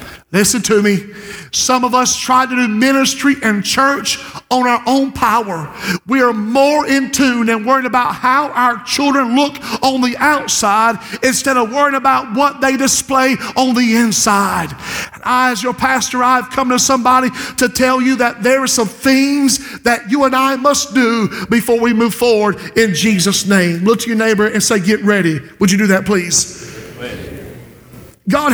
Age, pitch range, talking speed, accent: 50-69, 230-270 Hz, 175 wpm, American